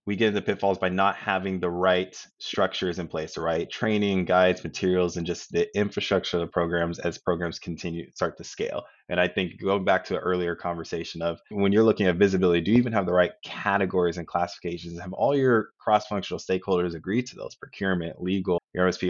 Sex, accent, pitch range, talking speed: male, American, 85-100 Hz, 205 wpm